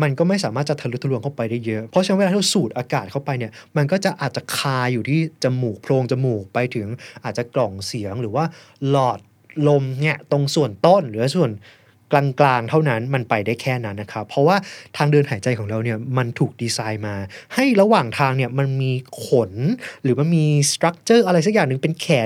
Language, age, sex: Thai, 20-39, male